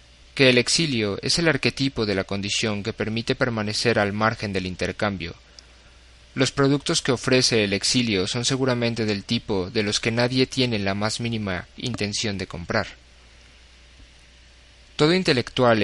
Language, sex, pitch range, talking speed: Spanish, male, 90-115 Hz, 150 wpm